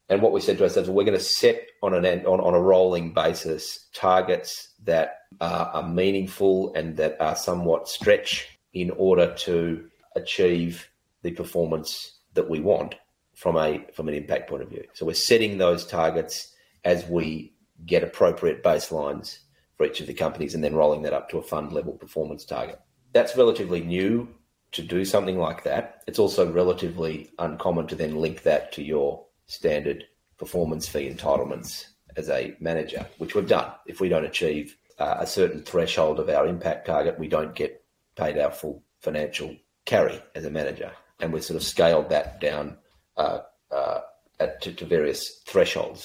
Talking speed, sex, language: 175 wpm, male, English